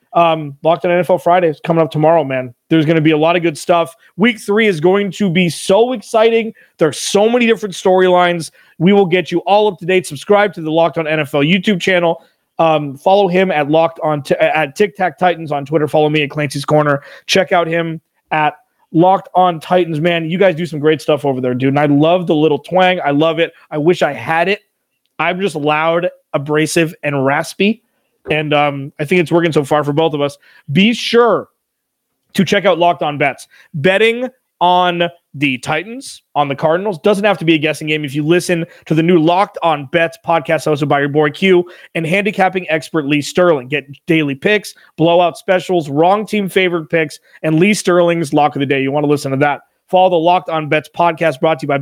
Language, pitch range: English, 150-185 Hz